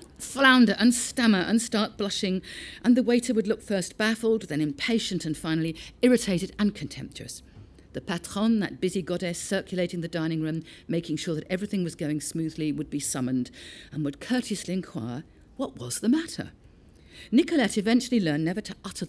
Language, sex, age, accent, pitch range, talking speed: English, female, 50-69, British, 145-225 Hz, 165 wpm